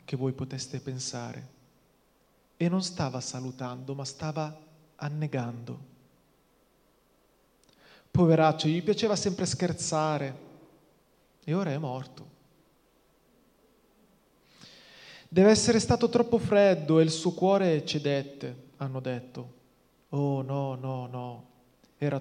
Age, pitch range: 30-49, 130-160 Hz